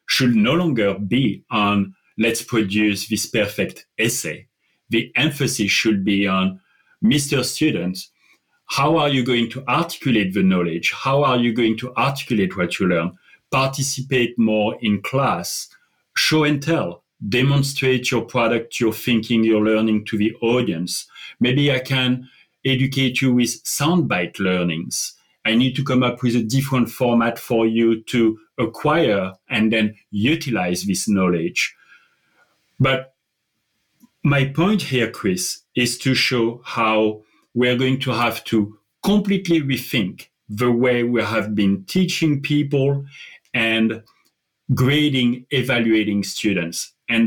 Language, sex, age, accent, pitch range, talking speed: English, male, 40-59, French, 110-135 Hz, 135 wpm